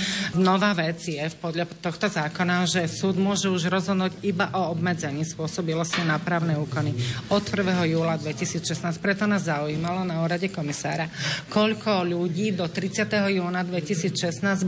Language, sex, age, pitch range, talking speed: Slovak, female, 40-59, 170-190 Hz, 140 wpm